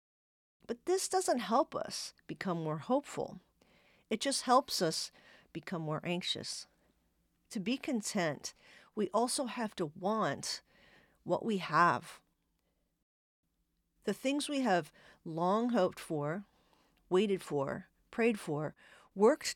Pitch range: 175-240 Hz